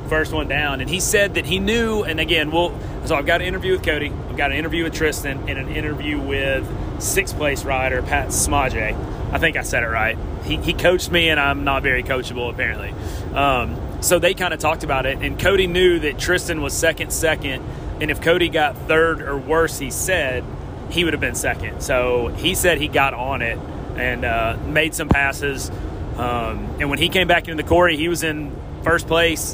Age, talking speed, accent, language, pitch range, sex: 30-49, 215 wpm, American, English, 130-170 Hz, male